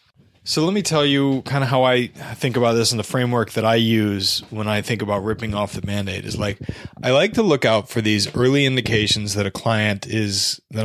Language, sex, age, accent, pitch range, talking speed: English, male, 30-49, American, 105-130 Hz, 230 wpm